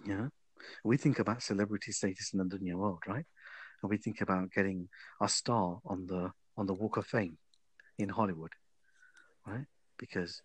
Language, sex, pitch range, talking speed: English, male, 95-115 Hz, 165 wpm